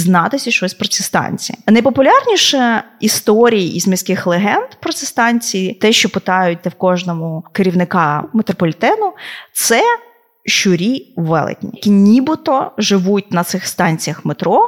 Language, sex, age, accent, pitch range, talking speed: Ukrainian, female, 20-39, native, 175-220 Hz, 120 wpm